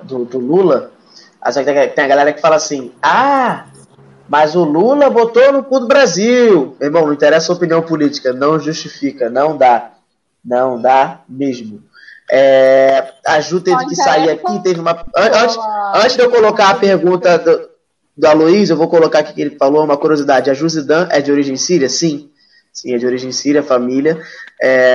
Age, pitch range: 20-39, 145-180 Hz